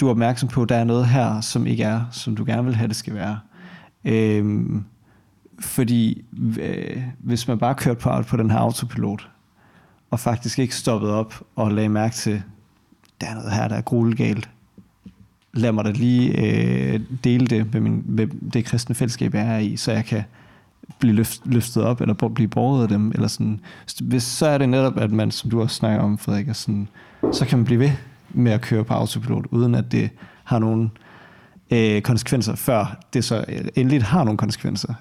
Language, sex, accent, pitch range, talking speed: Danish, male, native, 110-125 Hz, 205 wpm